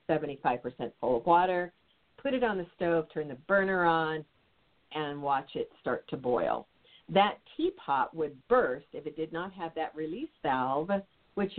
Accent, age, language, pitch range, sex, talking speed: American, 50-69, English, 155-215 Hz, female, 160 wpm